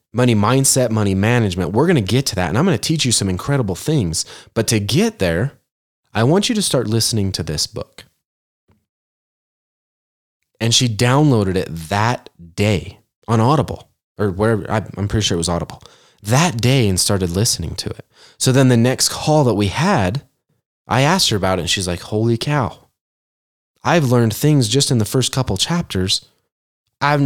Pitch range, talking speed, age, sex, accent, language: 100-135 Hz, 185 wpm, 20-39, male, American, English